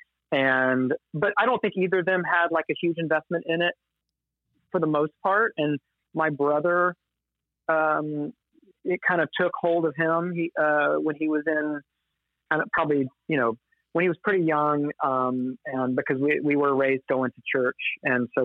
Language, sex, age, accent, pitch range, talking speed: English, male, 30-49, American, 125-155 Hz, 185 wpm